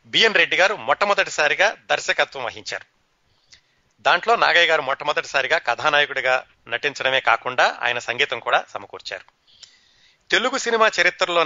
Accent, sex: native, male